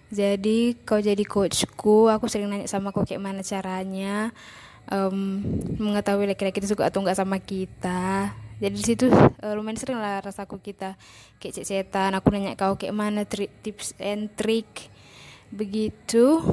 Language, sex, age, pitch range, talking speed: Indonesian, female, 10-29, 195-210 Hz, 145 wpm